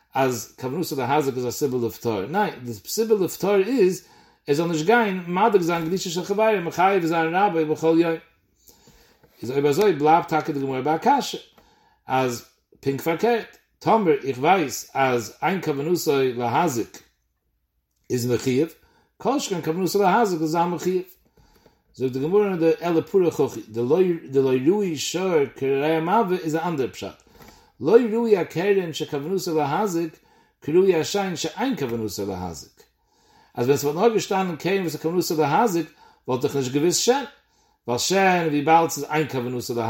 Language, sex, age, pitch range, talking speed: English, male, 60-79, 140-195 Hz, 105 wpm